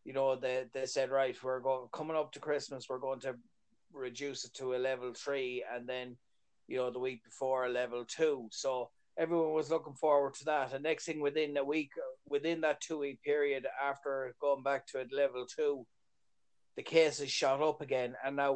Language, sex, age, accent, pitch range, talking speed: English, male, 30-49, Irish, 130-155 Hz, 205 wpm